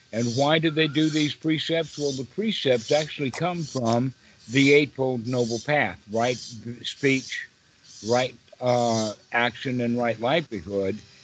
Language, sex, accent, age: English, male, American, 60-79